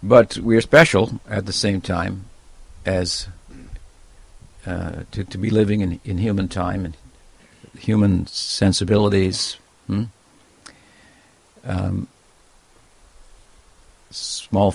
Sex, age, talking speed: male, 50-69, 100 wpm